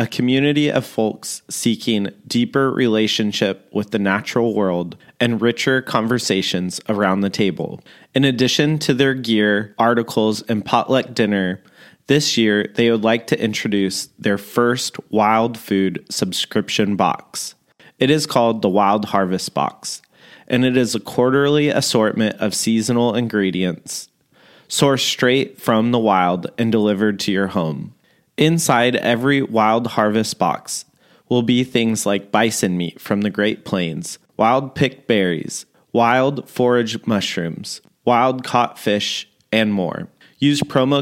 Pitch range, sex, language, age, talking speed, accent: 105-125 Hz, male, English, 30-49, 135 wpm, American